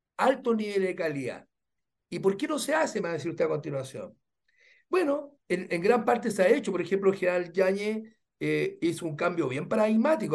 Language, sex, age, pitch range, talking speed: Spanish, male, 60-79, 170-230 Hz, 205 wpm